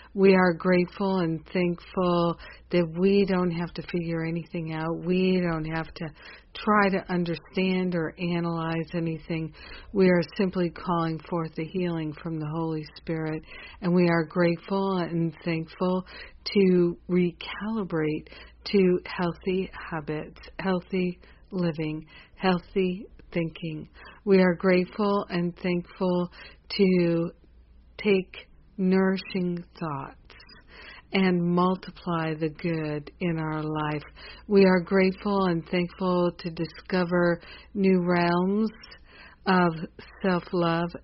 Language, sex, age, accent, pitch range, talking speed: English, female, 50-69, American, 165-185 Hz, 110 wpm